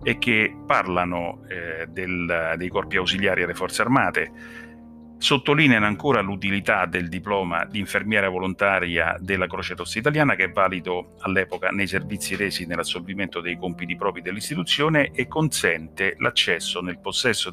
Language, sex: Italian, male